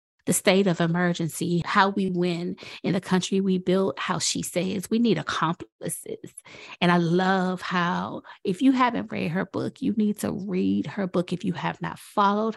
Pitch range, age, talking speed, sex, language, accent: 175-210 Hz, 30-49, 185 wpm, female, English, American